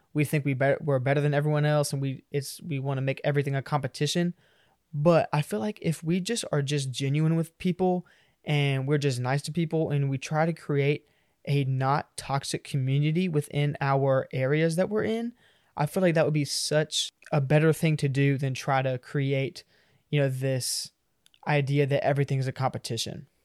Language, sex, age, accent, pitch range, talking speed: English, male, 20-39, American, 135-160 Hz, 185 wpm